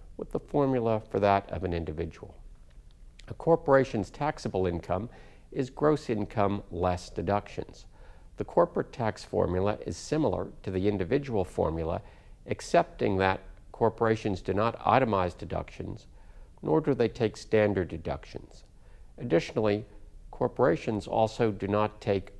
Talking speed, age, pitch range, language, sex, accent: 125 wpm, 50-69, 90-115 Hz, English, male, American